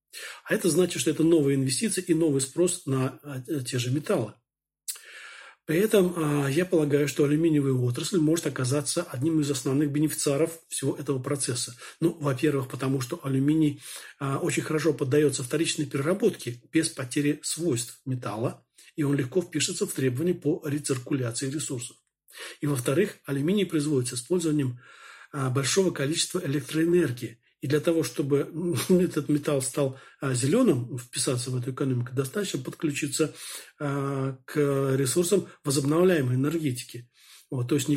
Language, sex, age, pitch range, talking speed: Turkish, male, 40-59, 135-160 Hz, 135 wpm